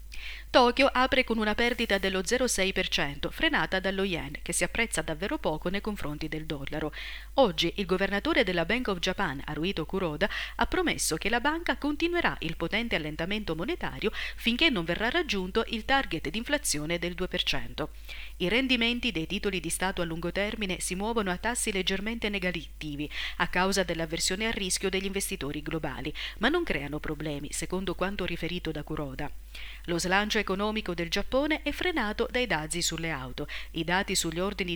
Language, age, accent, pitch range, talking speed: Italian, 40-59, native, 160-230 Hz, 165 wpm